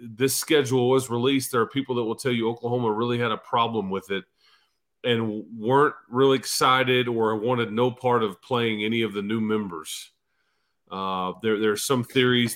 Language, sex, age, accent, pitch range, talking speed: English, male, 40-59, American, 110-130 Hz, 185 wpm